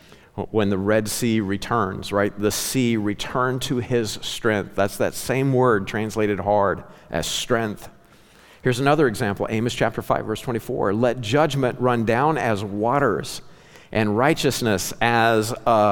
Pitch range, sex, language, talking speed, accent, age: 110-150 Hz, male, English, 145 wpm, American, 50-69